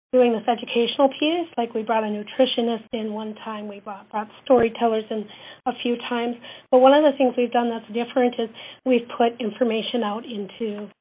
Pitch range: 220-250 Hz